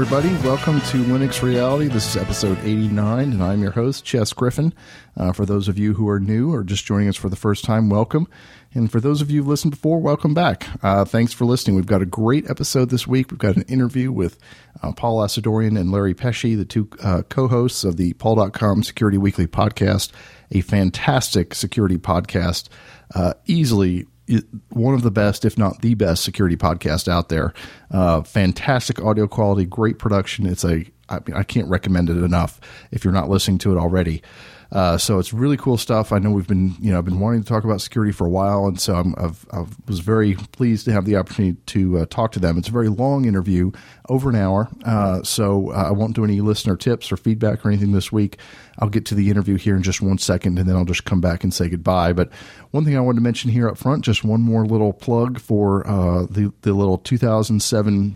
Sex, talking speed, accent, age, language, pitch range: male, 220 wpm, American, 50-69, English, 95-120 Hz